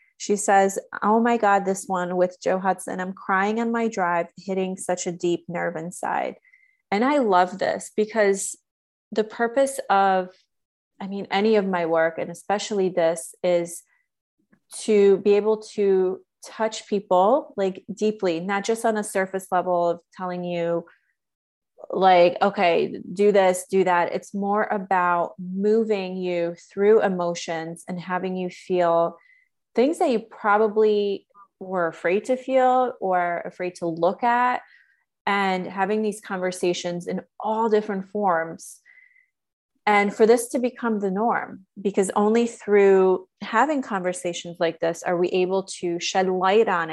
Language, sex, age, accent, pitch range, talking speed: English, female, 30-49, American, 180-220 Hz, 145 wpm